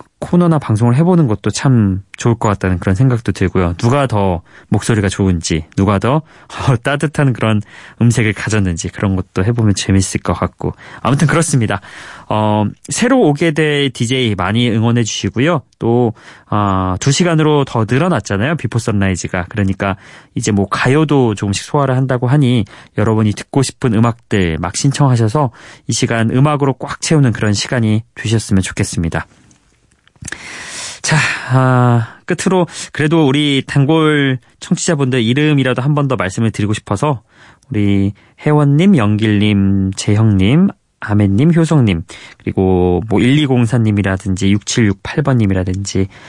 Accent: native